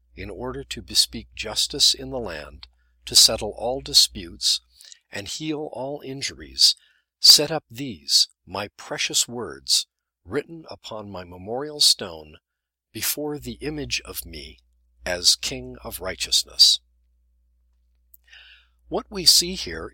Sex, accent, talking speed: male, American, 120 wpm